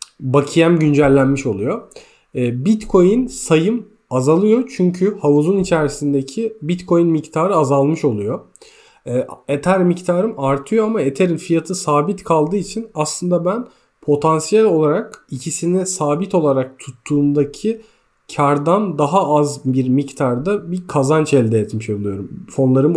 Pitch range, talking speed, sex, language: 140-190 Hz, 105 wpm, male, Turkish